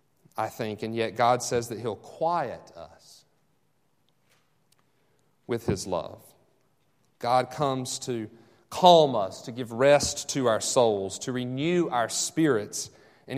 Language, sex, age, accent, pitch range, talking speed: English, male, 40-59, American, 125-155 Hz, 130 wpm